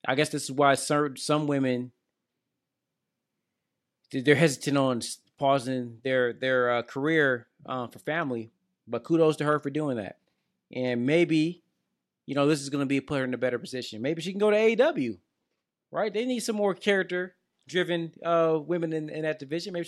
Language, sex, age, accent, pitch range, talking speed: English, male, 20-39, American, 125-175 Hz, 180 wpm